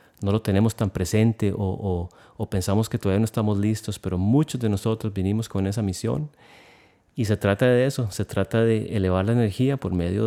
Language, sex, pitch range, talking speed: Spanish, male, 95-115 Hz, 200 wpm